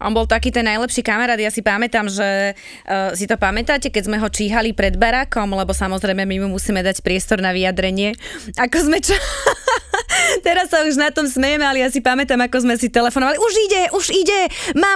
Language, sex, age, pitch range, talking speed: Slovak, female, 20-39, 195-255 Hz, 205 wpm